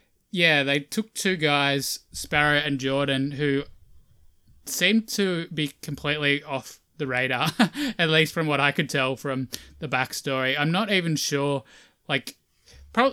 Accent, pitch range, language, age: Australian, 135-160 Hz, English, 20-39